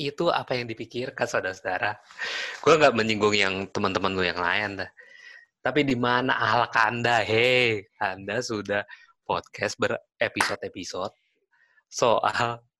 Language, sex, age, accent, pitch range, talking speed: Indonesian, male, 20-39, native, 100-125 Hz, 120 wpm